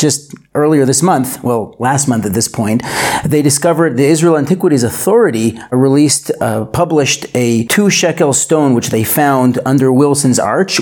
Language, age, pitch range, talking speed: English, 40-59, 125-150 Hz, 160 wpm